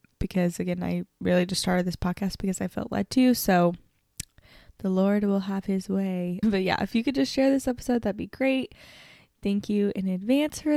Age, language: 10-29, English